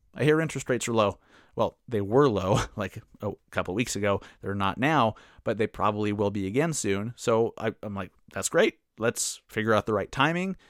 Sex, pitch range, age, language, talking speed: male, 110-135 Hz, 30-49, English, 215 wpm